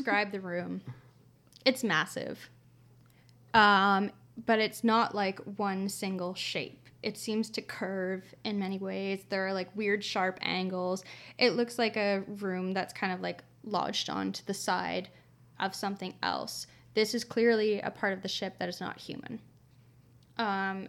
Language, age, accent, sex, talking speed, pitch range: English, 10-29, American, female, 160 wpm, 175-205 Hz